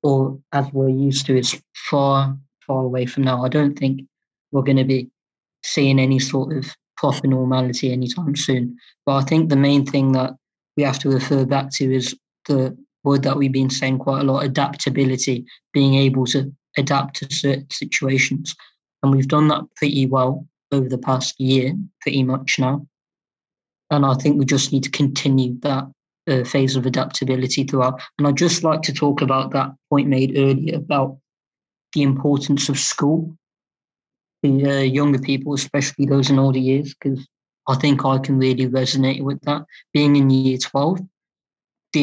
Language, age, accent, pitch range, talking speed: English, 20-39, British, 135-145 Hz, 175 wpm